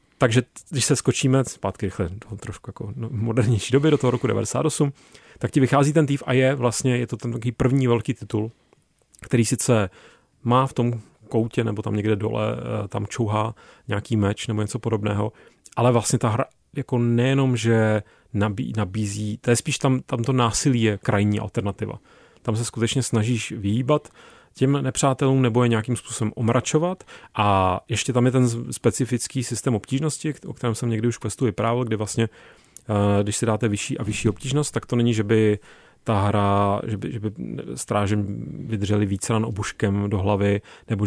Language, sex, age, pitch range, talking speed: Czech, male, 30-49, 105-130 Hz, 170 wpm